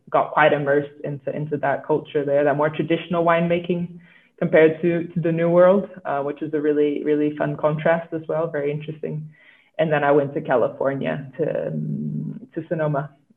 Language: English